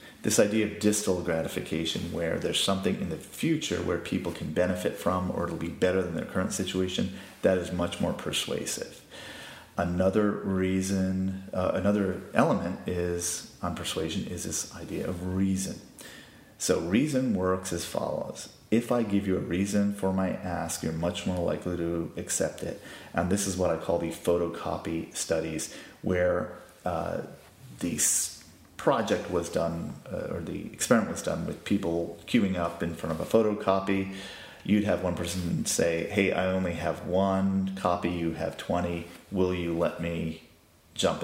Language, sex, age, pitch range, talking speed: English, male, 30-49, 85-95 Hz, 165 wpm